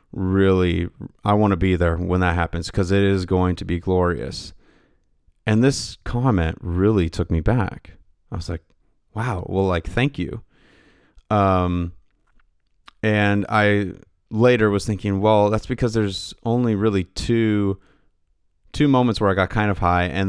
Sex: male